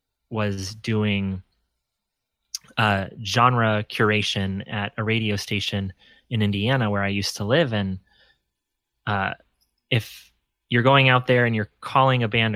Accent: American